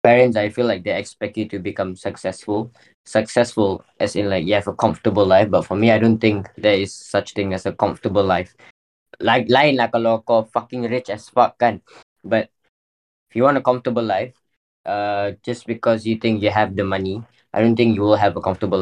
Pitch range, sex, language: 100-120 Hz, male, English